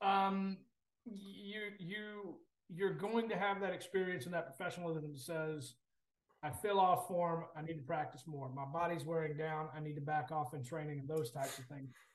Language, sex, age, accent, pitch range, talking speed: English, male, 30-49, American, 150-175 Hz, 195 wpm